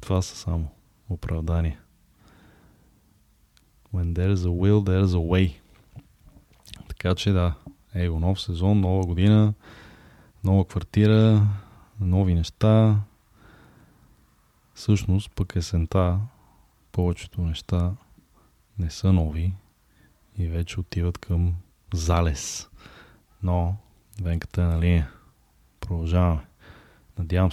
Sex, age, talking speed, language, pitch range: male, 20-39, 100 wpm, Bulgarian, 85-100 Hz